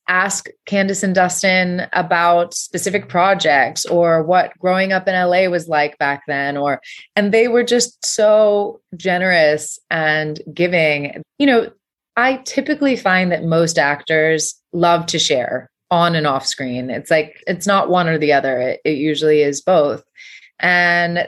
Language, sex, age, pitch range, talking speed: English, female, 20-39, 160-205 Hz, 155 wpm